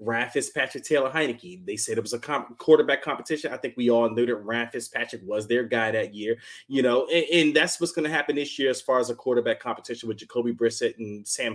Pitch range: 120-160 Hz